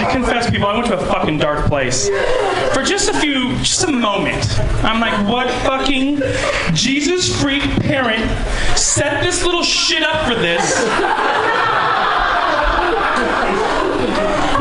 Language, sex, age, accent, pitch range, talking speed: English, male, 30-49, American, 200-305 Hz, 130 wpm